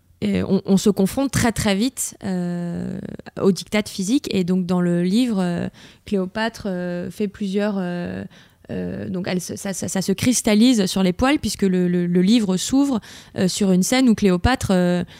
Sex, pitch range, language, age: female, 185-250 Hz, French, 20-39